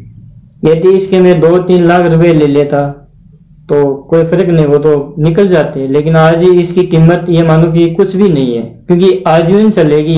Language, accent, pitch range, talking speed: Hindi, native, 145-170 Hz, 190 wpm